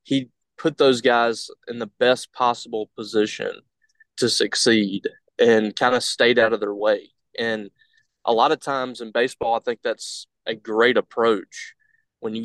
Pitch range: 115-135 Hz